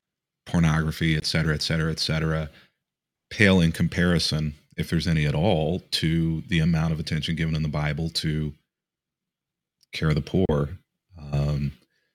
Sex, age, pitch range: male, 30-49, 80-90 Hz